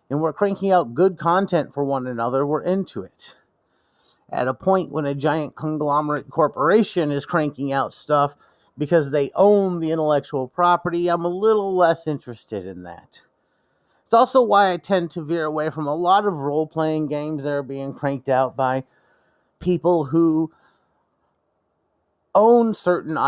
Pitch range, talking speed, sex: 120-170 Hz, 155 wpm, male